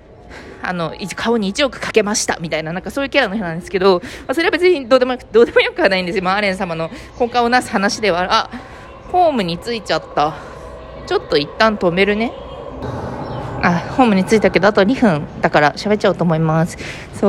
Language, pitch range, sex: Japanese, 175-255 Hz, female